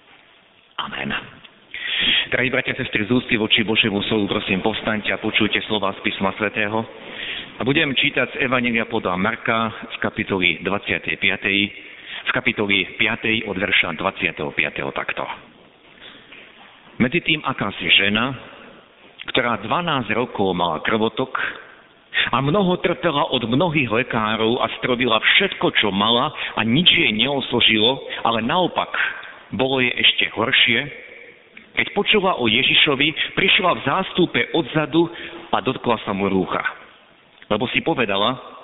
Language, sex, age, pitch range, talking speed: Slovak, male, 50-69, 105-145 Hz, 125 wpm